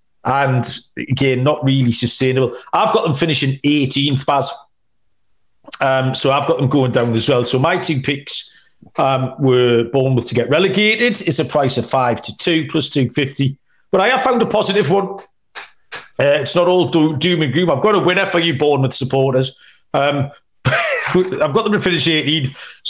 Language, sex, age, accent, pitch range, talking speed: English, male, 40-59, British, 130-170 Hz, 180 wpm